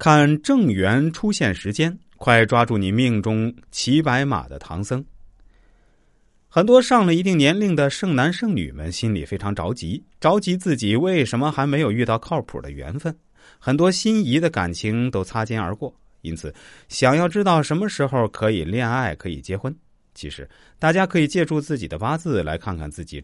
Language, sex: Chinese, male